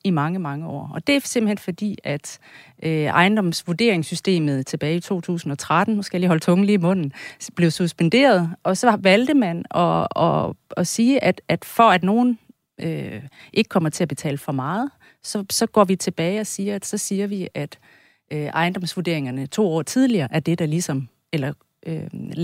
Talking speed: 175 wpm